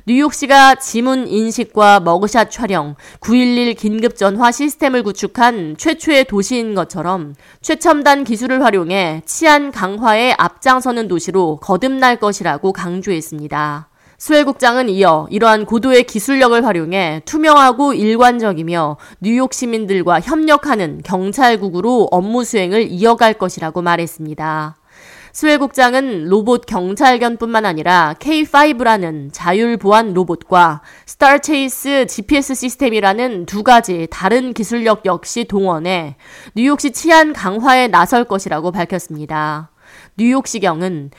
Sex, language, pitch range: female, Korean, 180-260 Hz